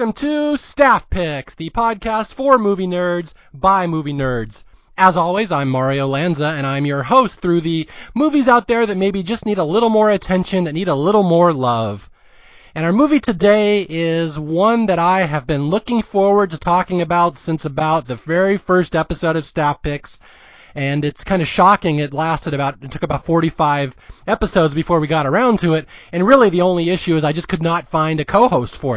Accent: American